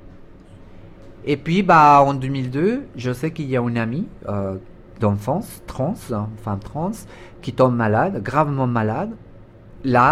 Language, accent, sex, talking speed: French, French, male, 140 wpm